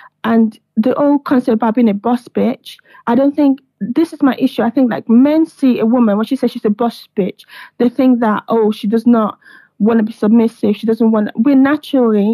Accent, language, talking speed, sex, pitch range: British, English, 225 wpm, female, 220-265 Hz